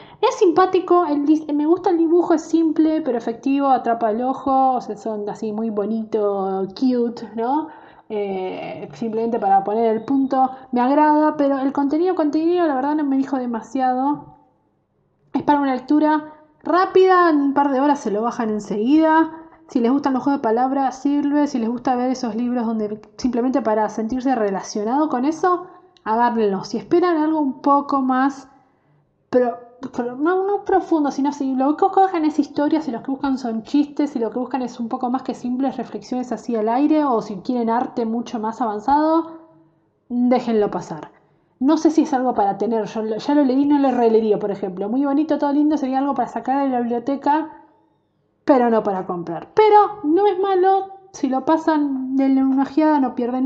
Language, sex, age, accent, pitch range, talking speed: Spanish, female, 20-39, Argentinian, 230-300 Hz, 185 wpm